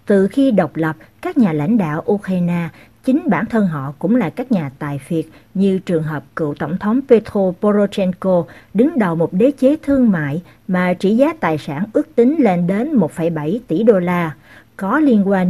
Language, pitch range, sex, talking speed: Vietnamese, 165-230 Hz, female, 195 wpm